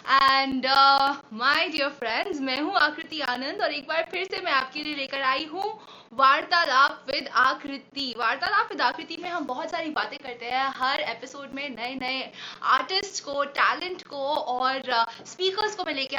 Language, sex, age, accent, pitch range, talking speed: Hindi, female, 20-39, native, 245-330 Hz, 170 wpm